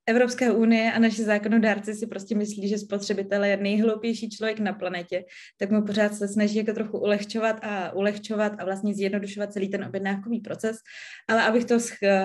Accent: native